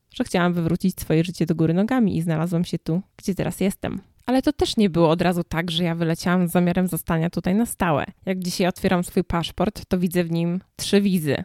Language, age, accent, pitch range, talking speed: Polish, 20-39, native, 170-205 Hz, 225 wpm